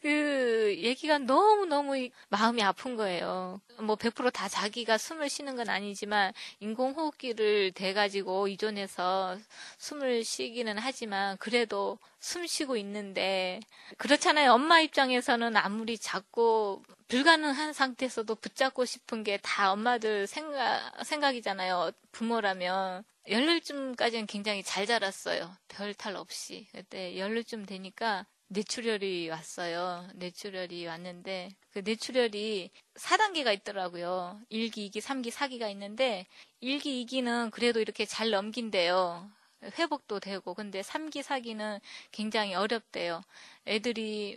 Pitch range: 195-245 Hz